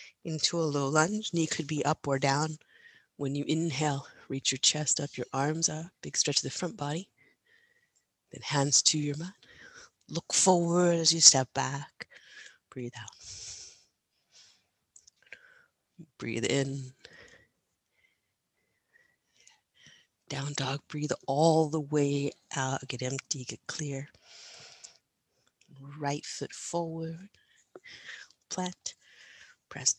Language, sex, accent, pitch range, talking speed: English, female, American, 140-175 Hz, 115 wpm